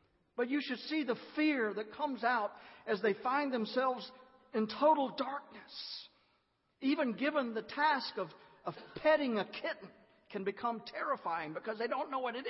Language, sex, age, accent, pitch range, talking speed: English, male, 50-69, American, 140-220 Hz, 165 wpm